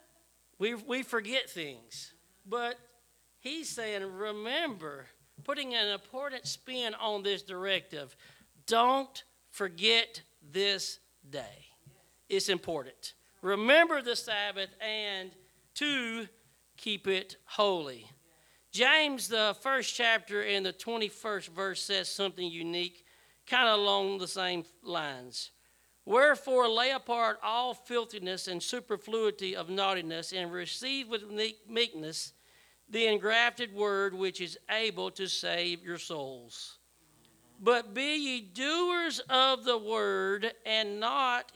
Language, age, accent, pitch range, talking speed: English, 40-59, American, 190-240 Hz, 115 wpm